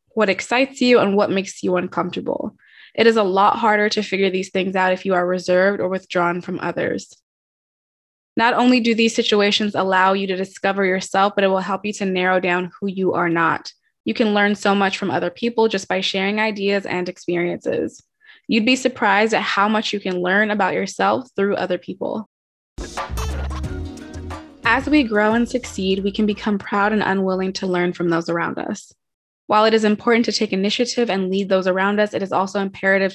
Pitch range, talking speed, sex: 185-220 Hz, 195 wpm, female